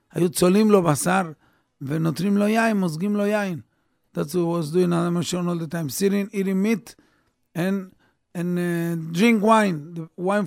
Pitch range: 145-195 Hz